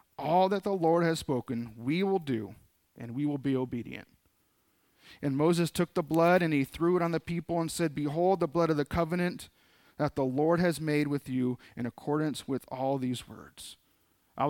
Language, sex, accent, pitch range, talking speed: English, male, American, 140-185 Hz, 200 wpm